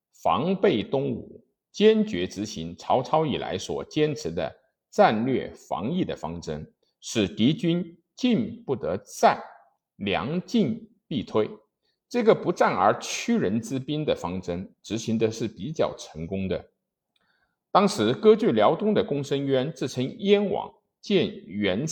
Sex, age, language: male, 50-69, Chinese